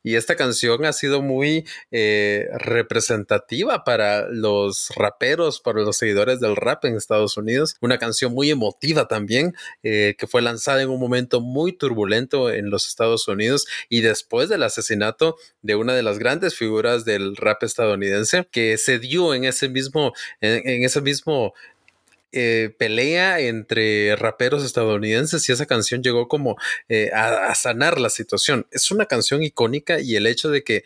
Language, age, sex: Spanish, 30-49, male